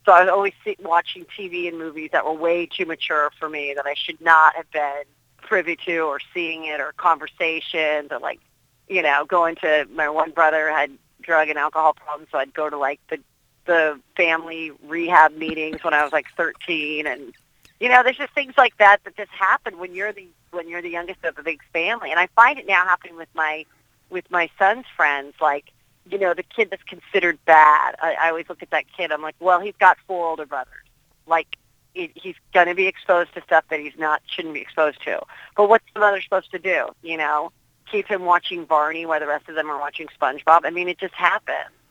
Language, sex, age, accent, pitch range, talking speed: English, female, 40-59, American, 155-180 Hz, 225 wpm